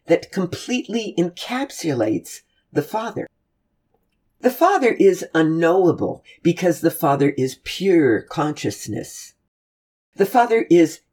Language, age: English, 50-69